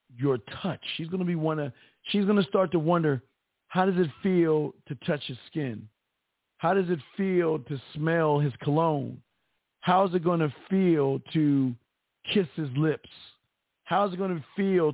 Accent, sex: American, male